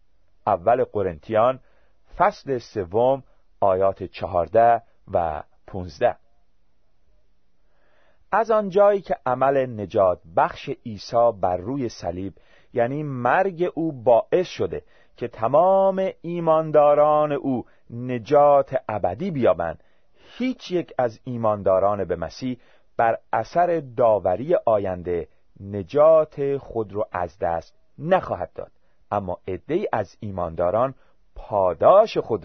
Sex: male